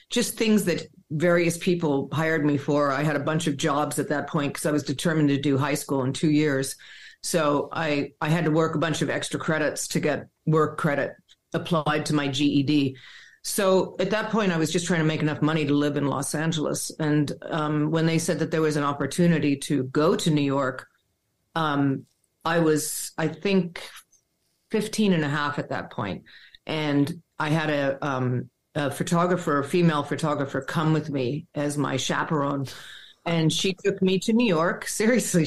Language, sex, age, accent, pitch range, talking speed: English, female, 50-69, American, 145-175 Hz, 195 wpm